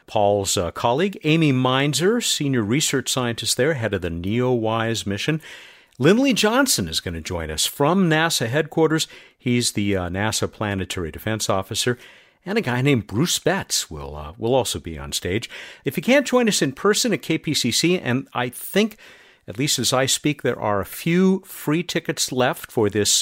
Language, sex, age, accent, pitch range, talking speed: English, male, 50-69, American, 100-150 Hz, 180 wpm